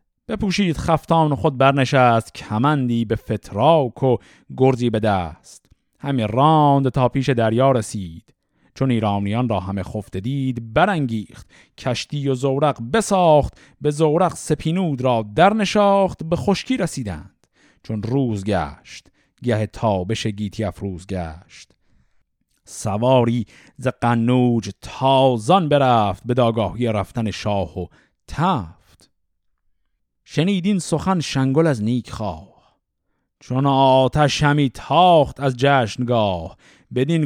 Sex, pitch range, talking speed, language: male, 110-160 Hz, 110 wpm, Persian